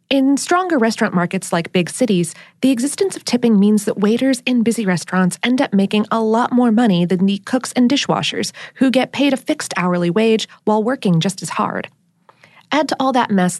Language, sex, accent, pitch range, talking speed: English, female, American, 185-260 Hz, 205 wpm